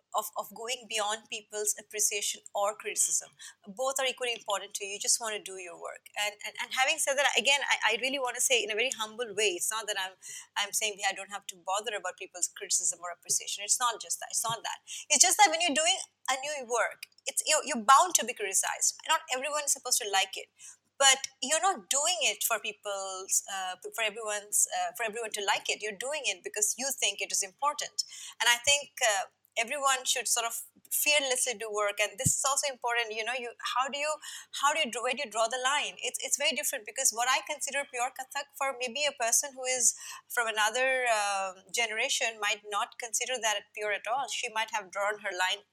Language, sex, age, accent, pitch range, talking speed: English, female, 30-49, Indian, 210-275 Hz, 230 wpm